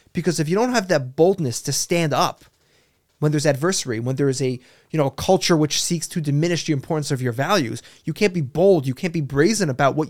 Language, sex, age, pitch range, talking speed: English, male, 30-49, 140-170 Hz, 240 wpm